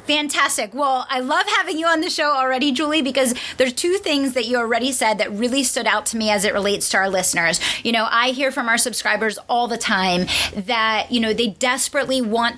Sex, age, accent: female, 30-49, American